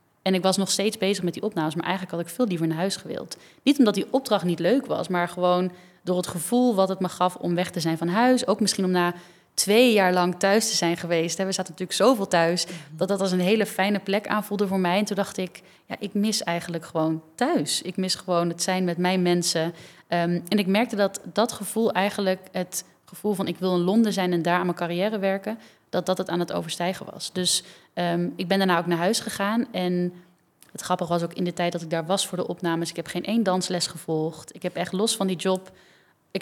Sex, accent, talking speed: female, Dutch, 245 wpm